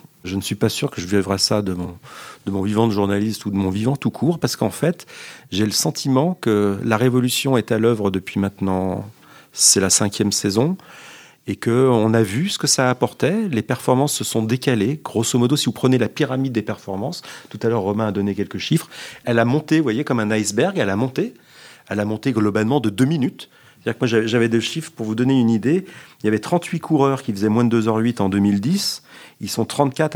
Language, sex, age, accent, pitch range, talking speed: French, male, 40-59, French, 105-130 Hz, 225 wpm